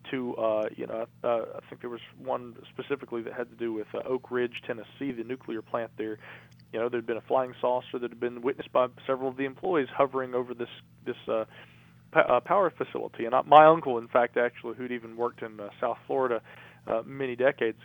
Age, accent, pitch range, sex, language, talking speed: 40-59, American, 115-135 Hz, male, English, 220 wpm